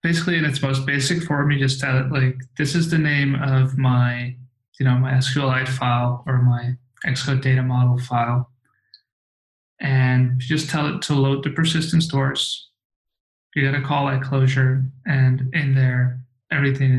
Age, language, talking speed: 20-39, English, 165 wpm